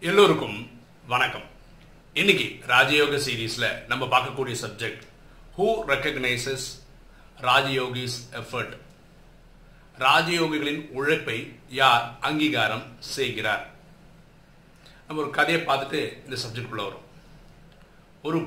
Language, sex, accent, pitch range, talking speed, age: Tamil, male, native, 130-165 Hz, 60 wpm, 50-69